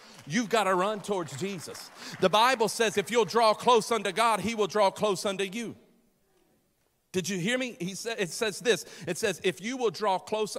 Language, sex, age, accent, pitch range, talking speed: English, male, 50-69, American, 160-215 Hz, 210 wpm